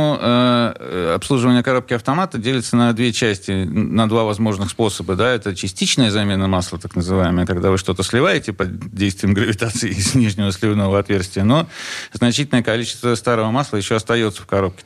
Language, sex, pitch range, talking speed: Russian, male, 105-130 Hz, 160 wpm